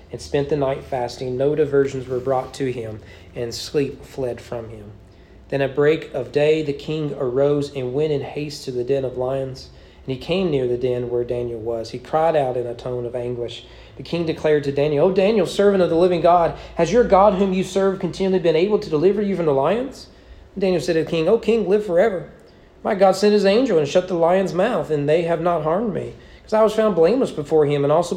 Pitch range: 130-170 Hz